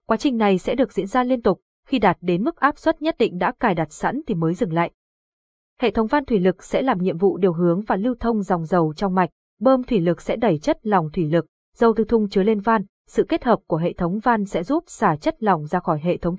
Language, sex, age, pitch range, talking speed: Vietnamese, female, 20-39, 180-235 Hz, 270 wpm